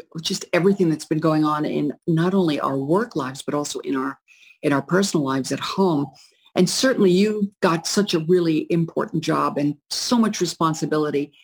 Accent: American